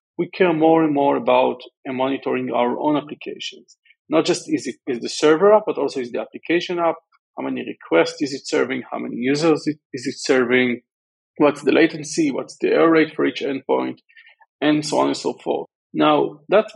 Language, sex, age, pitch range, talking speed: English, male, 40-59, 135-180 Hz, 195 wpm